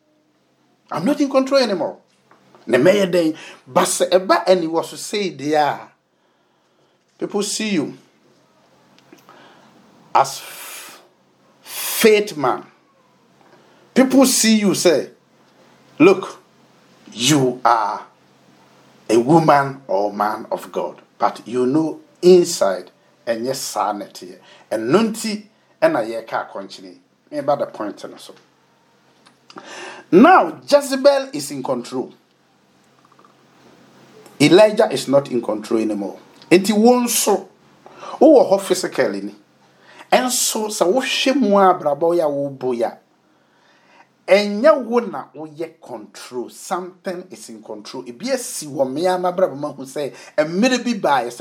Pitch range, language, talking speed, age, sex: 140-225 Hz, English, 90 wpm, 50-69, male